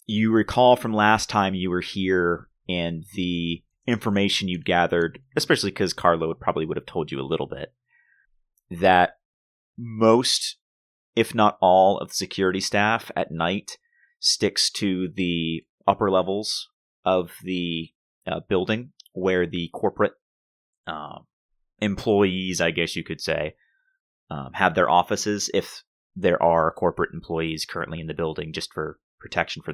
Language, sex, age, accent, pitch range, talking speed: English, male, 30-49, American, 85-110 Hz, 145 wpm